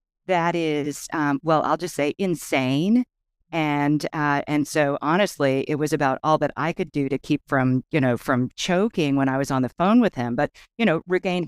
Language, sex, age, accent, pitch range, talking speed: English, female, 50-69, American, 125-160 Hz, 210 wpm